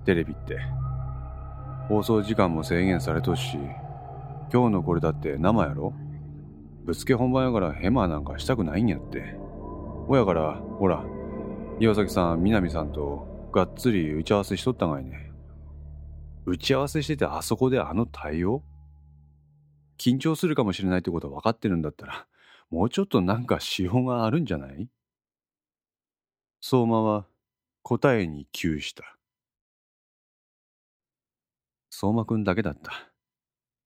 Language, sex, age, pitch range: Japanese, male, 30-49, 75-110 Hz